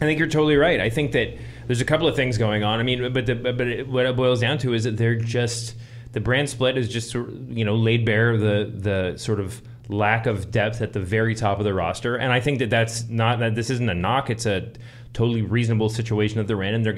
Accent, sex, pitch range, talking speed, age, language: American, male, 105-120 Hz, 260 wpm, 30-49, English